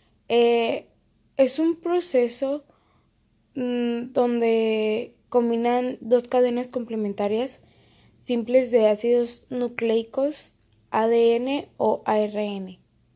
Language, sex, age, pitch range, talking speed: Spanish, female, 20-39, 220-250 Hz, 75 wpm